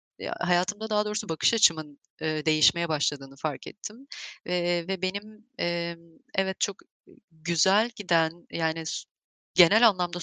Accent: native